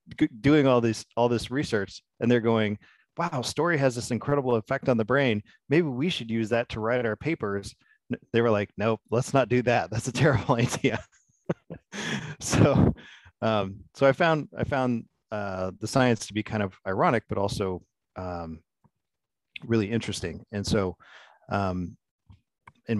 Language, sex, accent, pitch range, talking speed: English, male, American, 95-115 Hz, 165 wpm